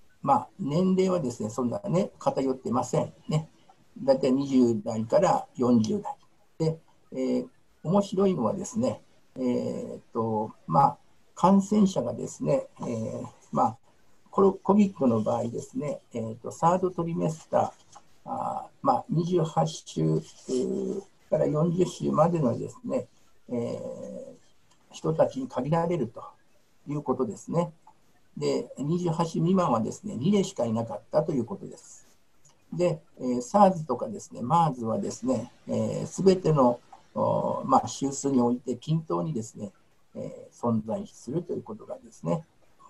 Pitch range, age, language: 125-190 Hz, 60-79, Japanese